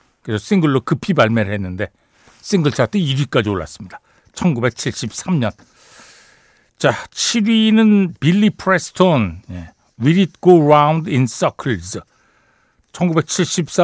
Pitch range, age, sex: 120-180 Hz, 60-79, male